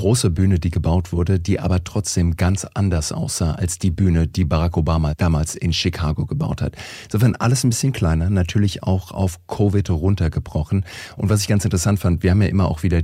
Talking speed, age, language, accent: 200 wpm, 40-59, German, German